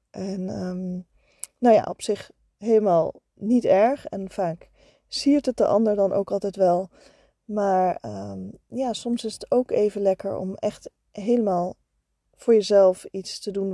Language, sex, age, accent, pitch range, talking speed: Dutch, female, 20-39, Dutch, 195-235 Hz, 155 wpm